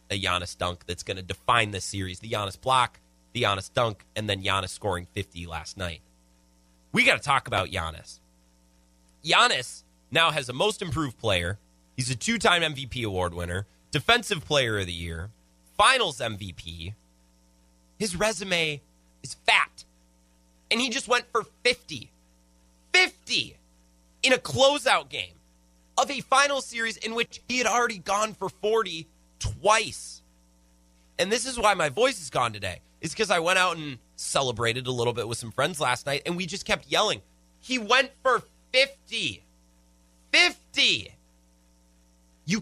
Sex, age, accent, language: male, 30-49, American, English